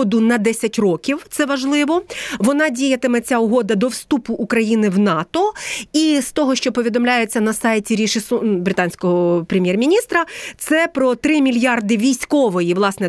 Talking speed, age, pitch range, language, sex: 140 wpm, 30-49, 225-285 Hz, Ukrainian, female